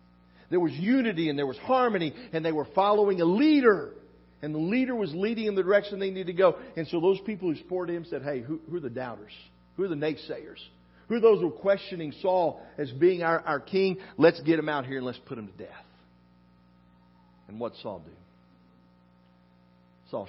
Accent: American